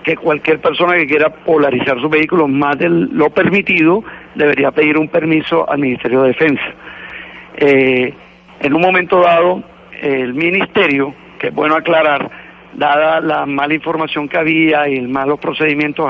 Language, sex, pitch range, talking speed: Spanish, male, 150-175 Hz, 155 wpm